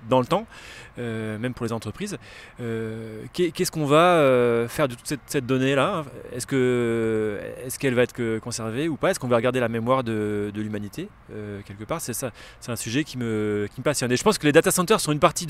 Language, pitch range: French, 120-155 Hz